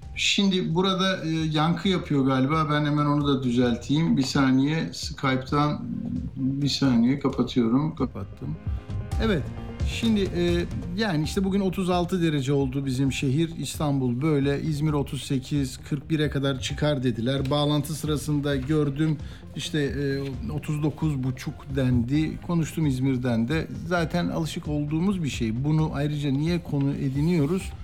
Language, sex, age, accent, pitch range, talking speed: Turkish, male, 50-69, native, 130-155 Hz, 125 wpm